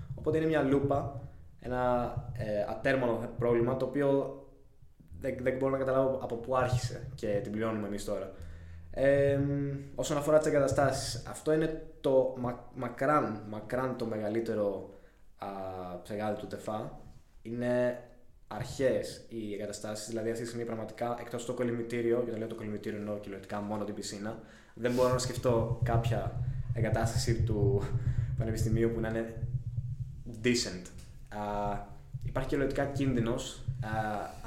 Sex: male